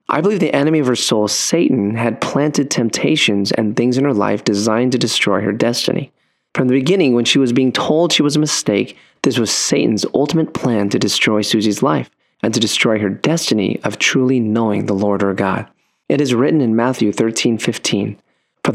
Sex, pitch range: male, 110-130 Hz